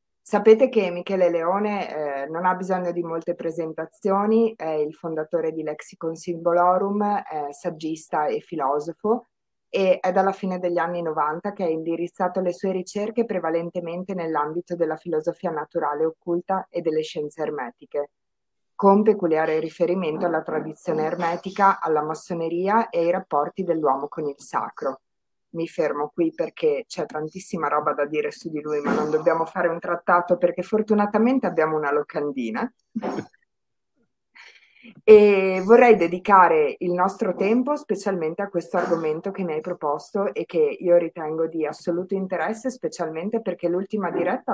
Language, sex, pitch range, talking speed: Italian, female, 160-200 Hz, 145 wpm